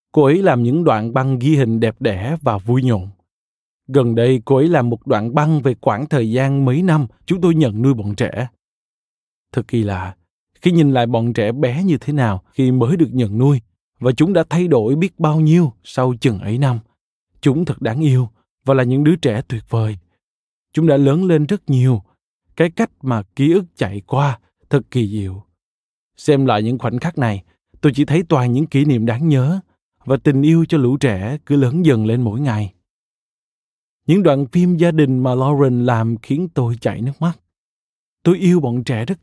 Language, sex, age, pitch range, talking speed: Vietnamese, male, 20-39, 115-155 Hz, 205 wpm